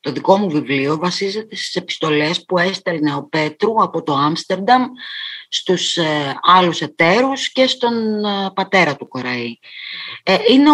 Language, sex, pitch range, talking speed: Greek, female, 160-230 Hz, 135 wpm